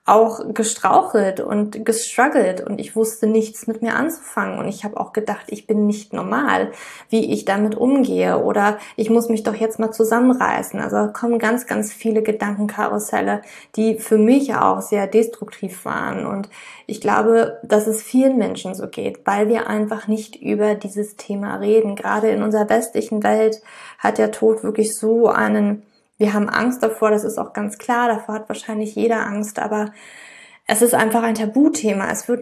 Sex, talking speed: female, 175 wpm